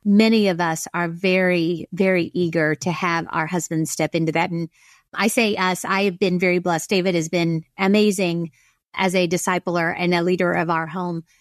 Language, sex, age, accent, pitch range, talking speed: English, female, 30-49, American, 180-220 Hz, 190 wpm